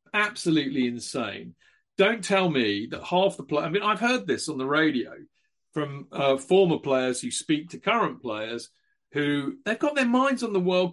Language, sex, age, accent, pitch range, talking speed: English, male, 40-59, British, 135-185 Hz, 185 wpm